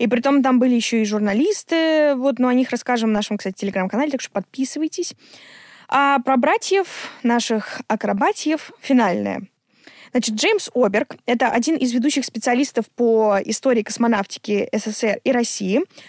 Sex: female